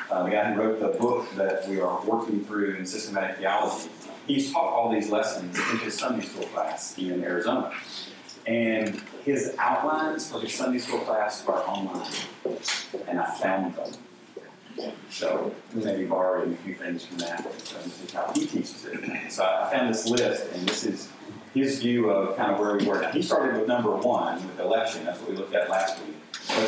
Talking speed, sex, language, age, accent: 195 wpm, male, English, 40-59, American